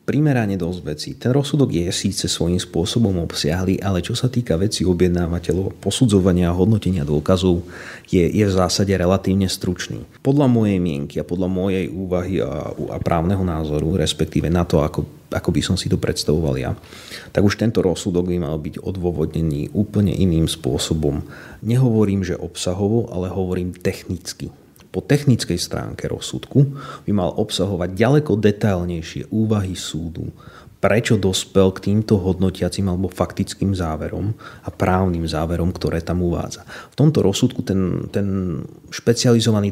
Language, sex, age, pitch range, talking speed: Slovak, male, 30-49, 90-105 Hz, 145 wpm